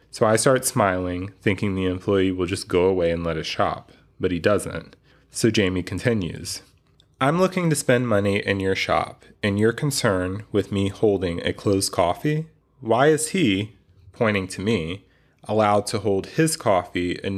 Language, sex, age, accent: English, male, 30-49, American